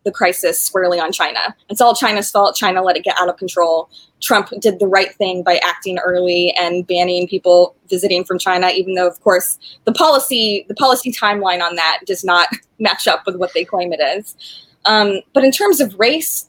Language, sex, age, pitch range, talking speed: English, female, 20-39, 185-235 Hz, 210 wpm